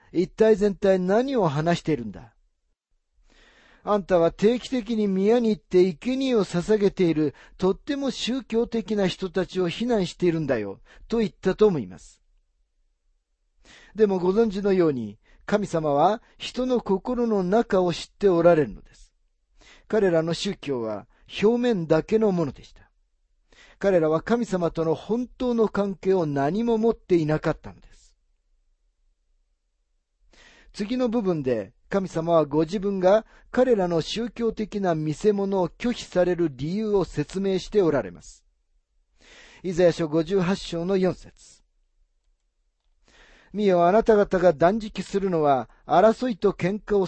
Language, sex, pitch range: Japanese, male, 140-210 Hz